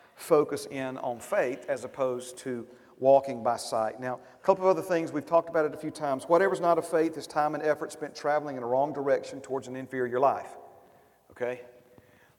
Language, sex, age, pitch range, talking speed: English, male, 40-59, 130-190 Hz, 215 wpm